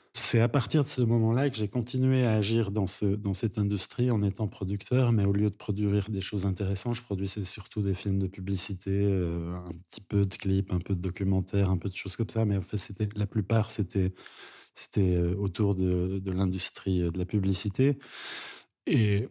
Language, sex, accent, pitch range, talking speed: French, male, French, 95-115 Hz, 205 wpm